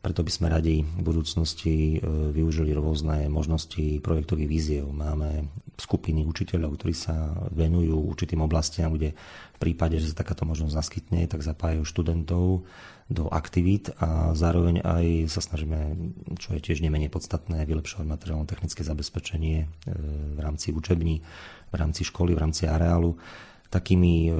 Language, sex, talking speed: Slovak, male, 140 wpm